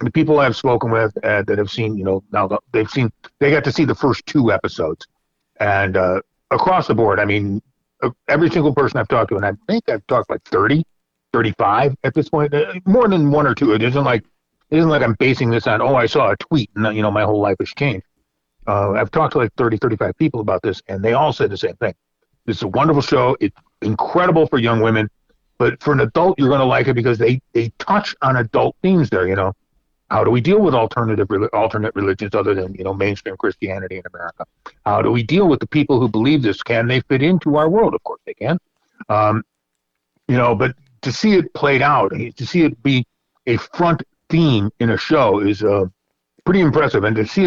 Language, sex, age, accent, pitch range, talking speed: English, male, 50-69, American, 110-150 Hz, 230 wpm